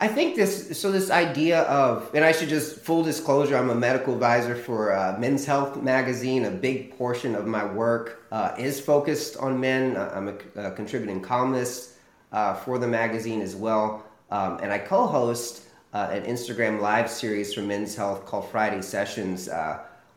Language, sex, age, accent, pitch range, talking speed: English, male, 30-49, American, 100-125 Hz, 175 wpm